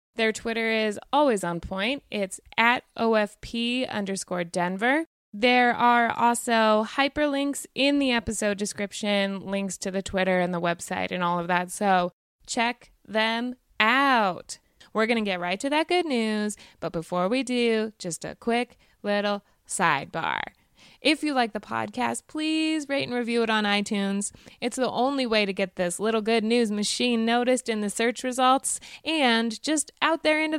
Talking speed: 165 wpm